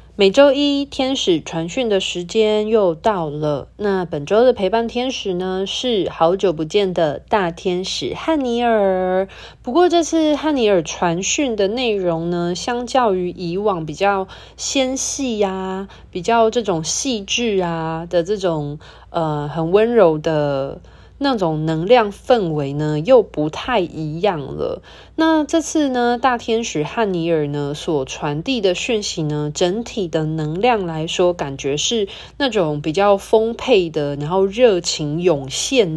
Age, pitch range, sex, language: 20-39, 160-240 Hz, female, Chinese